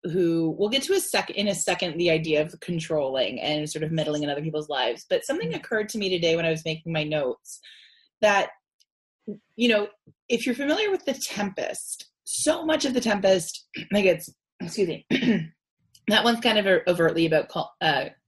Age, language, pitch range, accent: 20-39, English, 160-205 Hz, American